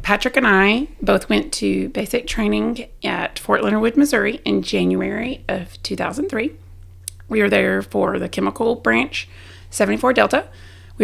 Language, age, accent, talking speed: English, 30-49, American, 145 wpm